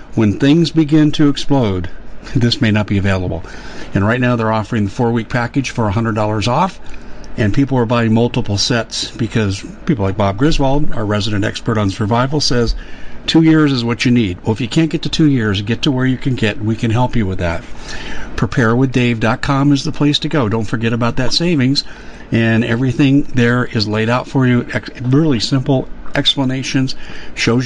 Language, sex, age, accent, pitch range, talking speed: English, male, 50-69, American, 110-135 Hz, 195 wpm